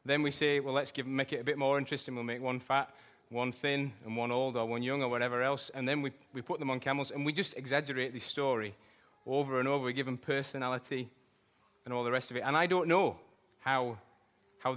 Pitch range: 120-145 Hz